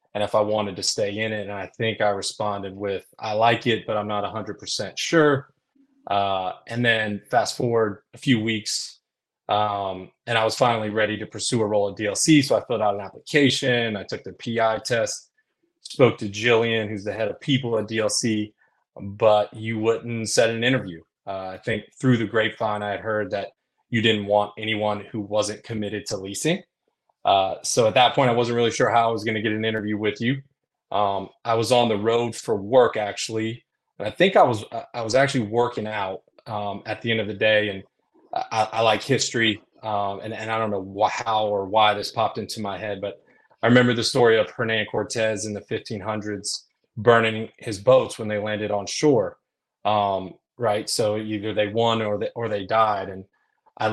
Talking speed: 205 wpm